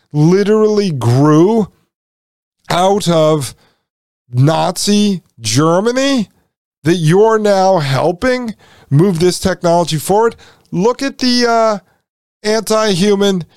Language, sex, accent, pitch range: English, male, American, 145-200 Hz